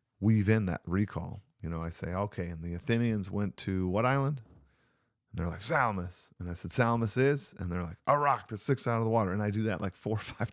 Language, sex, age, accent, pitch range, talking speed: English, male, 40-59, American, 85-110 Hz, 250 wpm